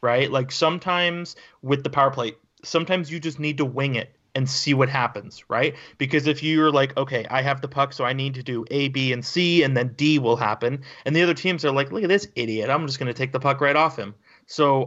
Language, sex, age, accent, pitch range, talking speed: English, male, 30-49, American, 130-165 Hz, 255 wpm